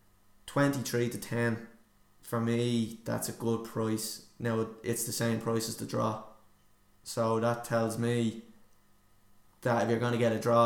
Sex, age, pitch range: male, 20-39, 110-120 Hz